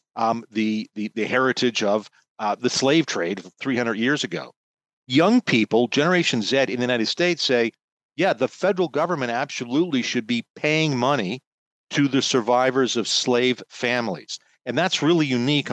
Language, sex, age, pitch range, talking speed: English, male, 50-69, 115-140 Hz, 160 wpm